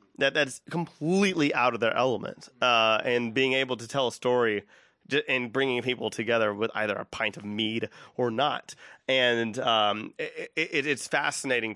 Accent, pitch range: American, 110-130 Hz